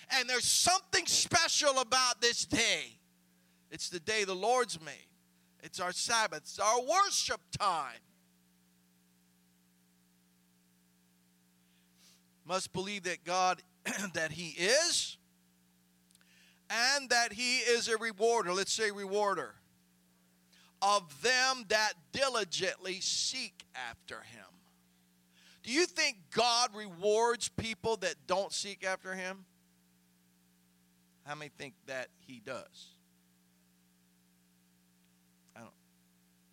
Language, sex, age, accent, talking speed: English, male, 40-59, American, 105 wpm